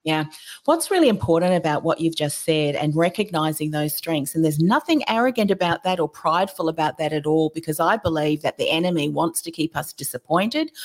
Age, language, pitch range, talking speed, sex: 40-59, English, 165-205 Hz, 200 wpm, female